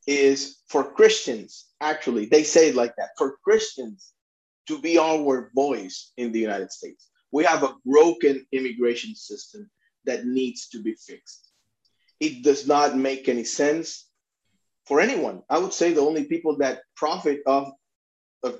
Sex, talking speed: male, 155 wpm